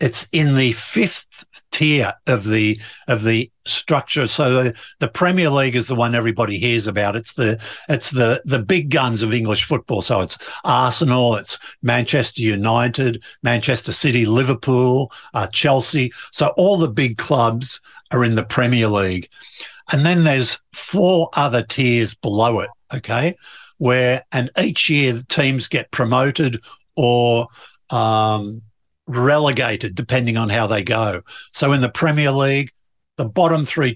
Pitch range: 115-140 Hz